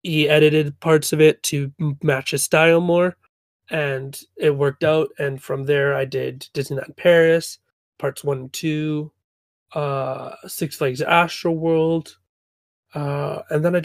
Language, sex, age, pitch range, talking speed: English, male, 30-49, 140-160 Hz, 145 wpm